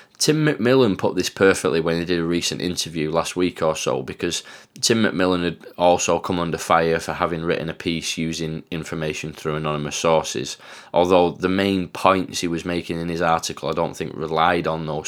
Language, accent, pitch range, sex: English, British, 80-100 Hz, male